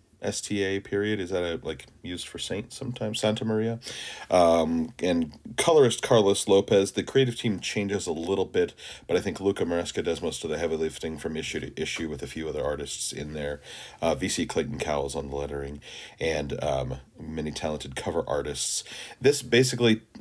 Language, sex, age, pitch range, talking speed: English, male, 40-59, 80-105 Hz, 180 wpm